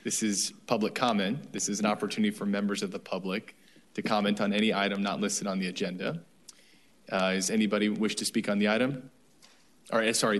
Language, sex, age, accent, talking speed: English, male, 20-39, American, 190 wpm